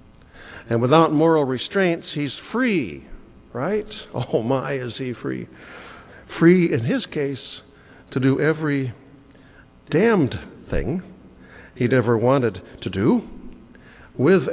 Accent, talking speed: American, 110 wpm